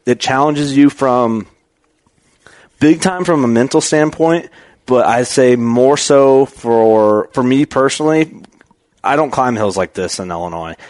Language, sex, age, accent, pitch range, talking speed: English, male, 30-49, American, 105-135 Hz, 150 wpm